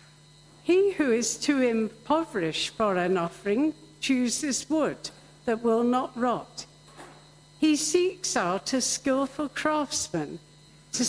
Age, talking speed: 60-79, 115 wpm